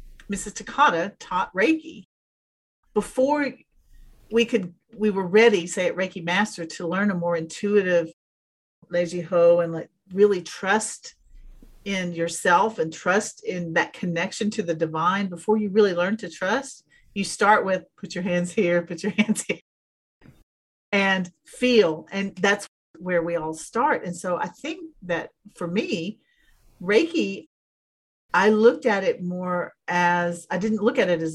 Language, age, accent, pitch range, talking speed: English, 40-59, American, 170-215 Hz, 150 wpm